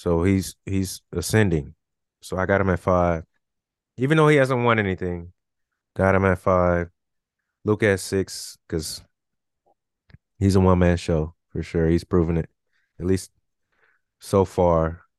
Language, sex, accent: English, male, American